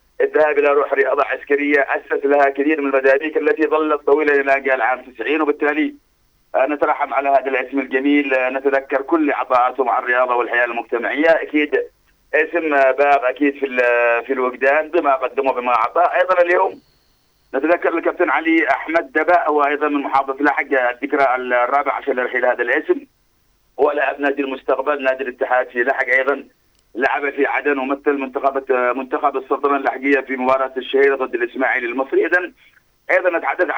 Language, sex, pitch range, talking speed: Arabic, male, 130-150 Hz, 145 wpm